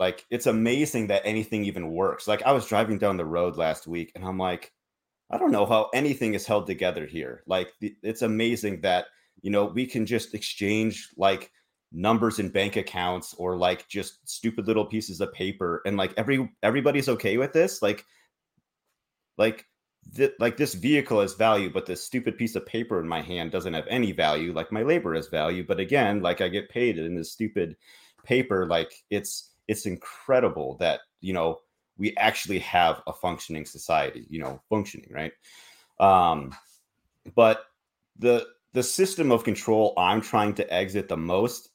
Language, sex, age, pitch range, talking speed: English, male, 30-49, 90-115 Hz, 180 wpm